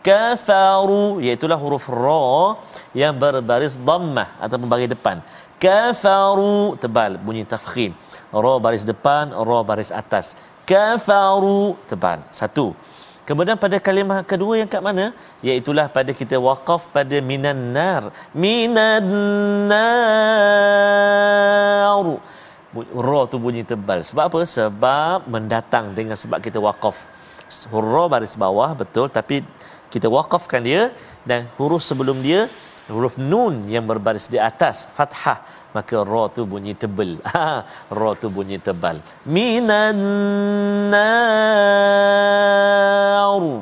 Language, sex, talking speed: Malayalam, male, 105 wpm